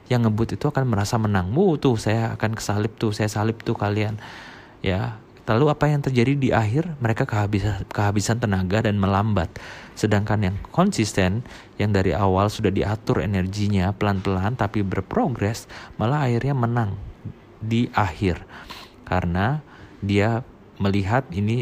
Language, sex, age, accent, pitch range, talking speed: Indonesian, male, 30-49, native, 100-120 Hz, 140 wpm